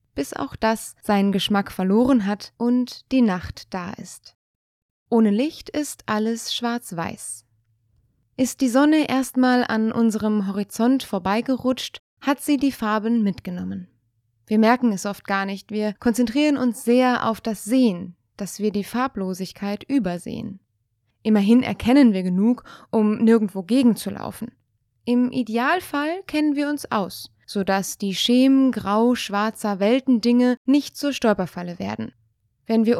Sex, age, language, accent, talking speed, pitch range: female, 20-39, German, German, 130 wpm, 190-255 Hz